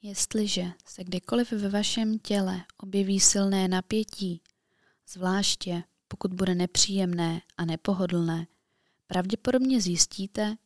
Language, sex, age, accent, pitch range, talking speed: Czech, female, 20-39, native, 180-210 Hz, 95 wpm